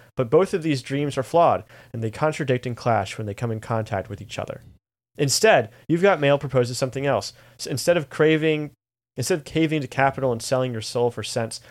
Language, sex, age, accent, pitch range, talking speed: English, male, 30-49, American, 115-140 Hz, 215 wpm